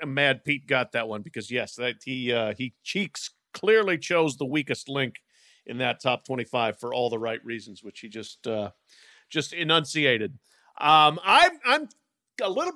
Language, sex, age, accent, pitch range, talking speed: English, male, 50-69, American, 140-185 Hz, 180 wpm